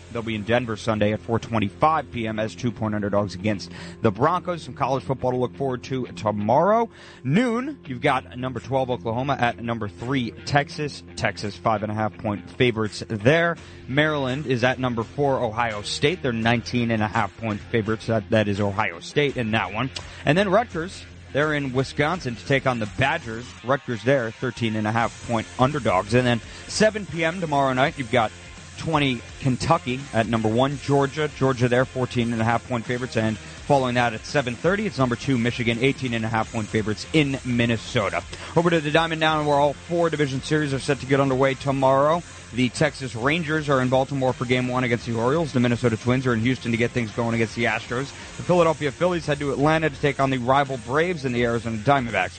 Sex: male